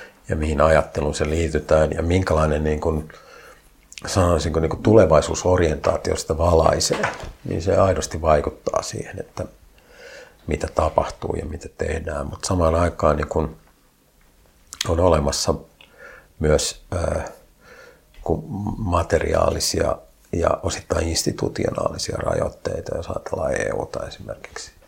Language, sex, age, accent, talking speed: Finnish, male, 50-69, native, 105 wpm